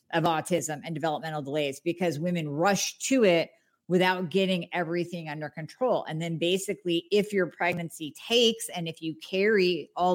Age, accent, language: 50-69, American, English